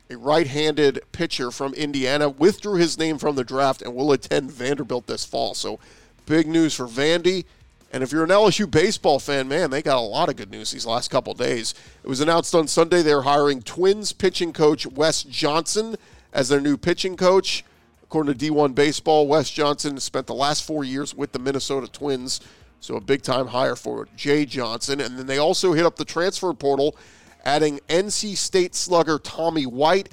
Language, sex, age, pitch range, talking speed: English, male, 40-59, 130-160 Hz, 190 wpm